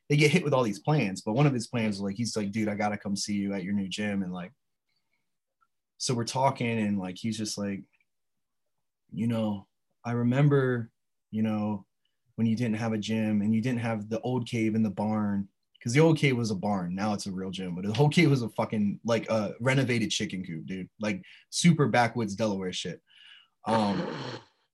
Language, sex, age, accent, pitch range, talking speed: English, male, 20-39, American, 105-130 Hz, 220 wpm